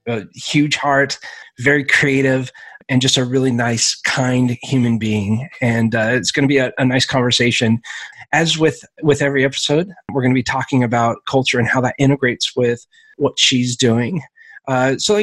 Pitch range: 120-140 Hz